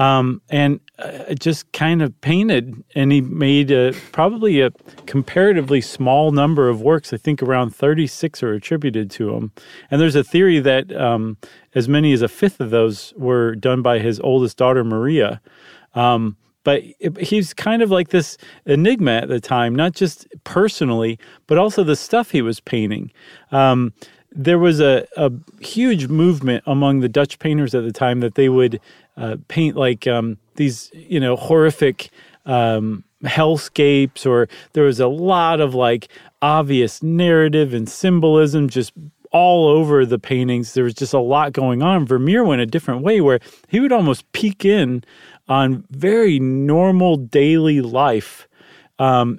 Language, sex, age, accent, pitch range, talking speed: English, male, 40-59, American, 125-155 Hz, 160 wpm